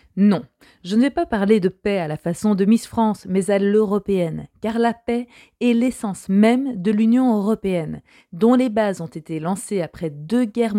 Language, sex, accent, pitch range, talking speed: French, female, French, 180-230 Hz, 195 wpm